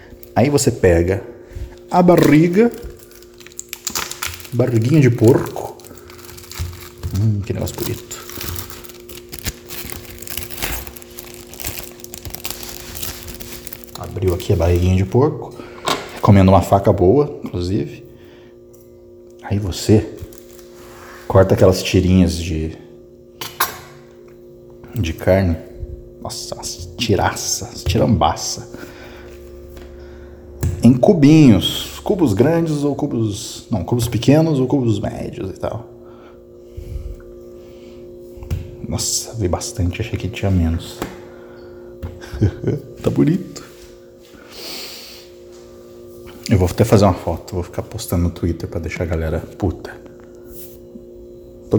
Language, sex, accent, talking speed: Portuguese, male, Brazilian, 90 wpm